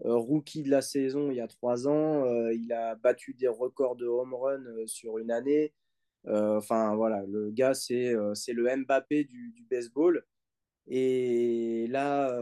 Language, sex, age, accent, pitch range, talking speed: French, male, 20-39, French, 115-140 Hz, 160 wpm